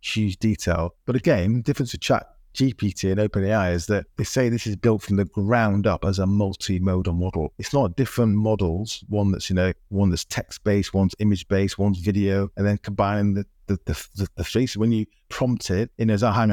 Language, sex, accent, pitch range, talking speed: English, male, British, 95-115 Hz, 225 wpm